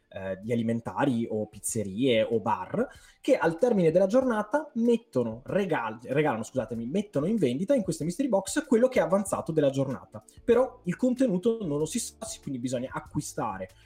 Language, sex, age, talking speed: Italian, male, 20-39, 160 wpm